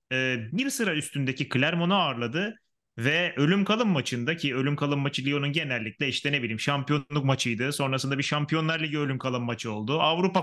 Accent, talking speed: native, 160 wpm